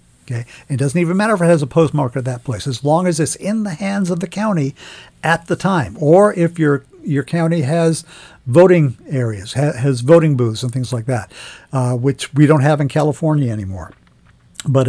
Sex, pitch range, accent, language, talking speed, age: male, 135-180 Hz, American, English, 200 wpm, 50-69